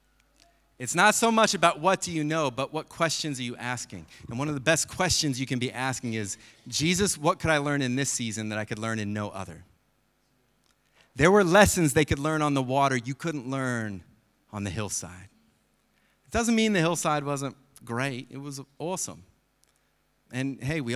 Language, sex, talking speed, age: English, male, 200 wpm, 30-49